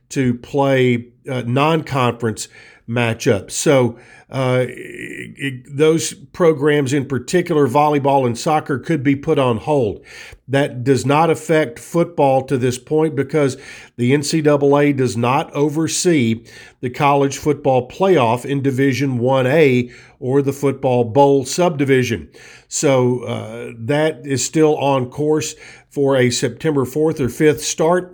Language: English